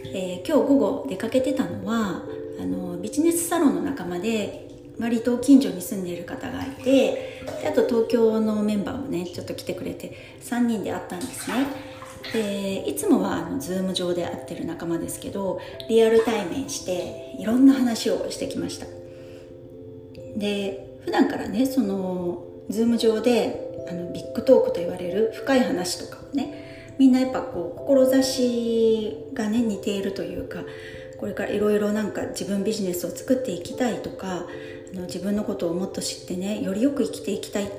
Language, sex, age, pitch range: Japanese, female, 40-59, 180-250 Hz